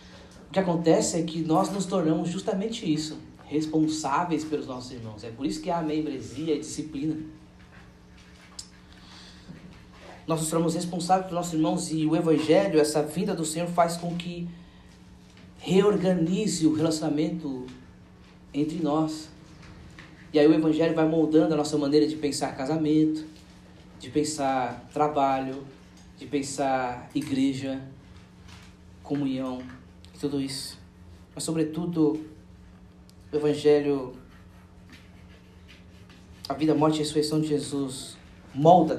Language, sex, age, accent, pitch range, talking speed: Portuguese, male, 20-39, Brazilian, 125-155 Hz, 120 wpm